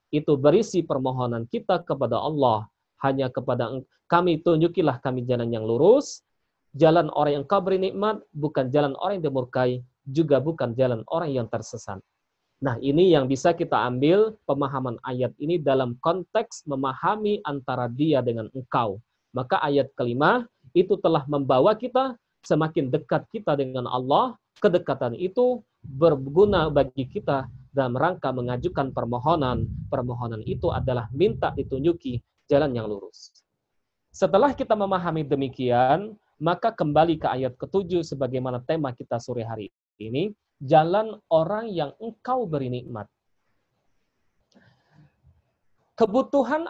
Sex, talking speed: male, 125 wpm